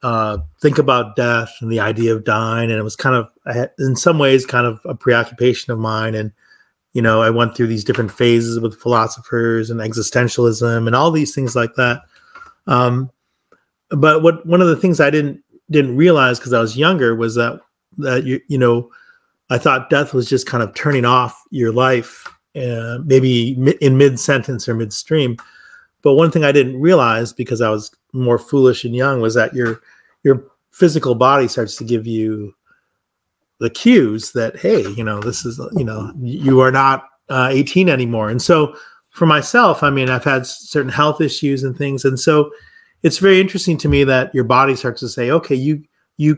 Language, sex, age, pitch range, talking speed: English, male, 30-49, 120-150 Hz, 195 wpm